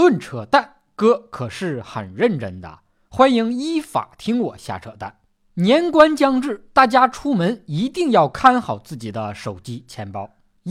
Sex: male